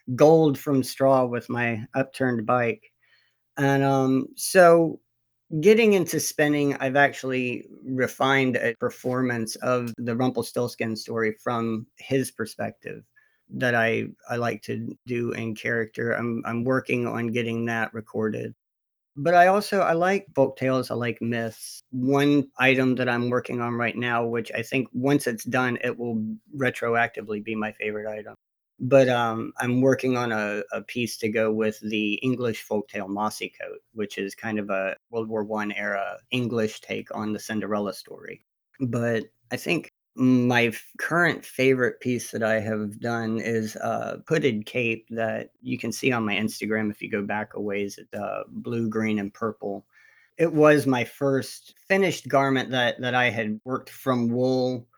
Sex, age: male, 50-69